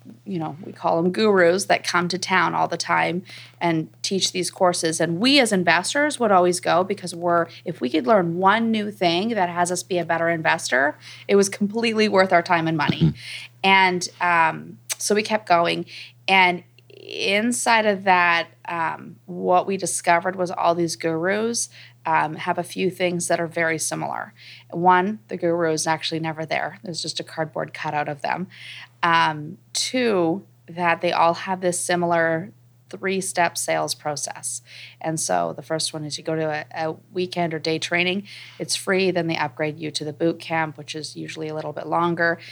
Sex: female